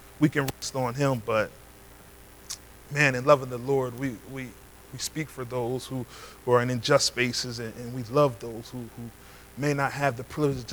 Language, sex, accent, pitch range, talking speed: English, male, American, 125-150 Hz, 190 wpm